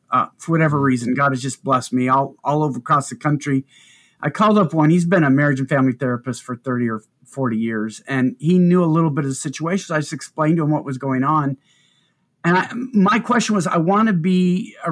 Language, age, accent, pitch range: English, 50-69, American, 135-180 Hz